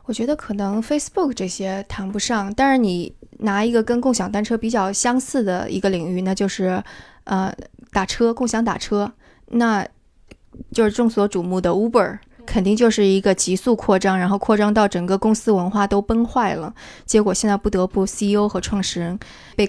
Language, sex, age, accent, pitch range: Chinese, female, 20-39, native, 195-230 Hz